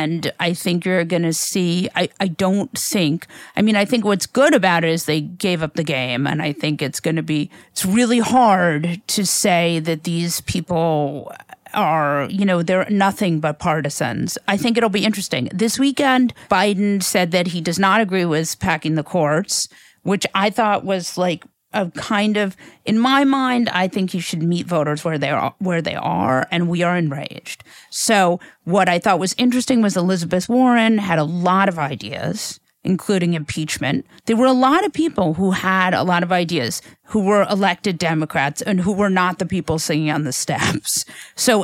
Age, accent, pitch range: 40-59, American, 165-205 Hz